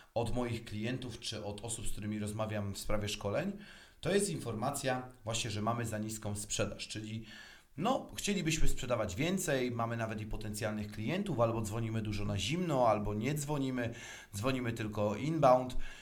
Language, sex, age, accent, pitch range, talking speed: Polish, male, 30-49, native, 110-145 Hz, 155 wpm